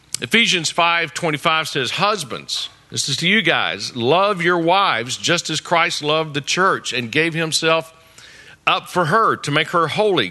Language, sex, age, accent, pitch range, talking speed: English, male, 50-69, American, 140-175 Hz, 165 wpm